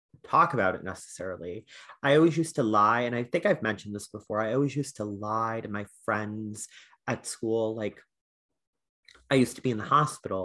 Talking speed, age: 195 wpm, 30-49